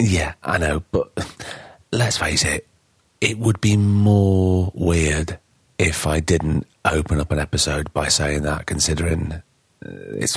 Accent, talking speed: British, 140 wpm